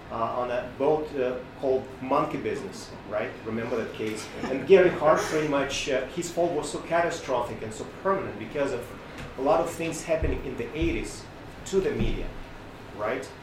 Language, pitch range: English, 110-140 Hz